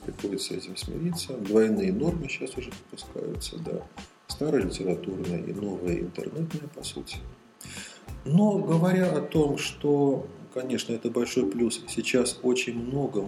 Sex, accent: male, native